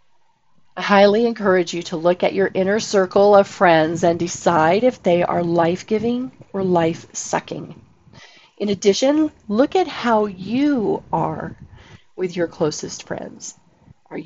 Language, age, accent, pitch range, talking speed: English, 40-59, American, 175-225 Hz, 135 wpm